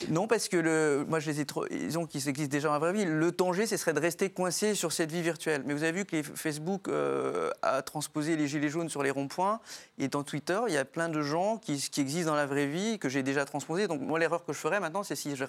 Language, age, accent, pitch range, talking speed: French, 30-49, French, 140-170 Hz, 295 wpm